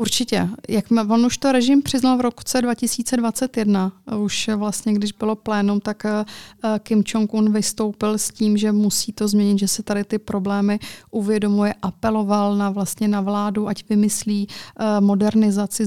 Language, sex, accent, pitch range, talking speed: Czech, female, native, 205-220 Hz, 150 wpm